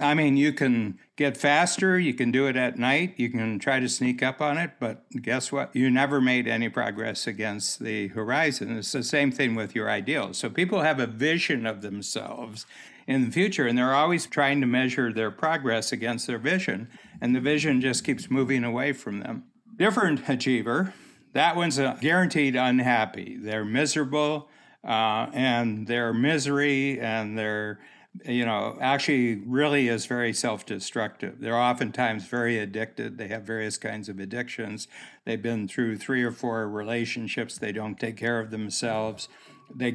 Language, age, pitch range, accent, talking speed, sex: English, 60-79, 115-140 Hz, American, 170 wpm, male